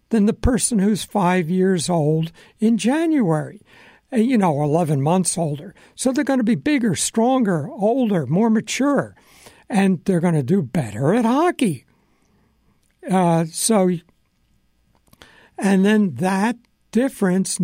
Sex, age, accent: male, 60-79, American